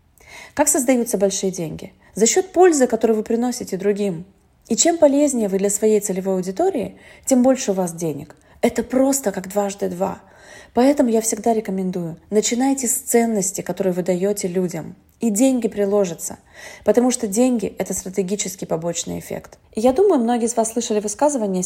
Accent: native